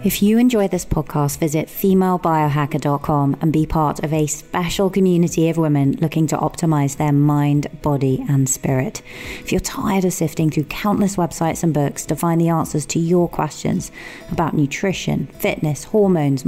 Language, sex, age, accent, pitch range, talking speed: English, female, 30-49, British, 145-170 Hz, 165 wpm